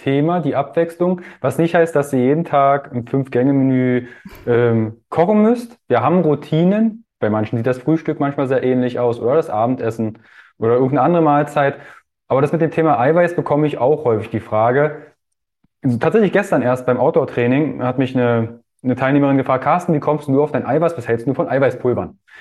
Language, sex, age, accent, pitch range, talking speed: German, male, 20-39, German, 125-170 Hz, 195 wpm